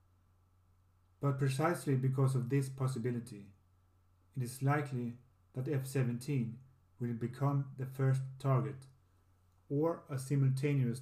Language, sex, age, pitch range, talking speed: English, male, 40-59, 90-135 Hz, 105 wpm